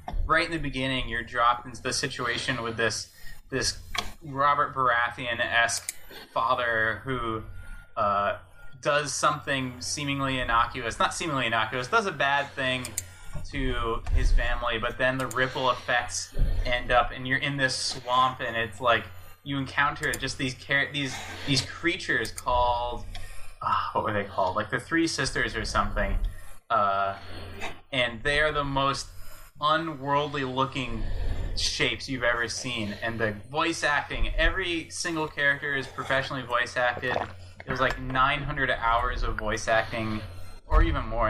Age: 20-39